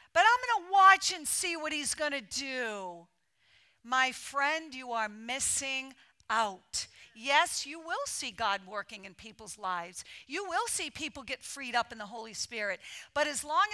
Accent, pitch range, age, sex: American, 245-335 Hz, 50-69, female